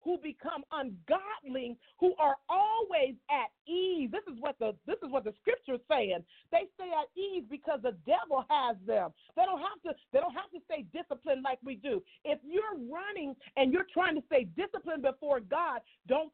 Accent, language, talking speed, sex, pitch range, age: American, English, 195 wpm, female, 275-360 Hz, 40-59